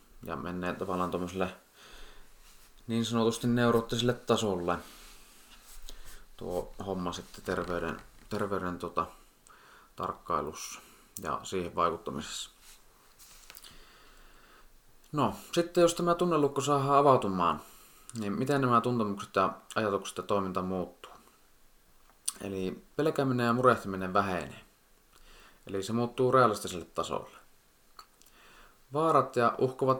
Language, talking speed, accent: Finnish, 95 wpm, native